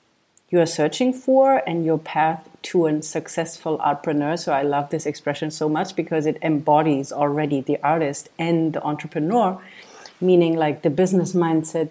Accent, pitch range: German, 150-185 Hz